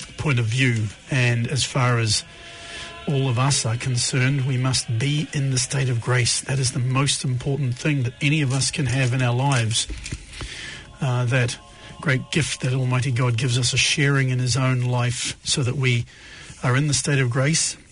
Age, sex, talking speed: 40-59, male, 200 wpm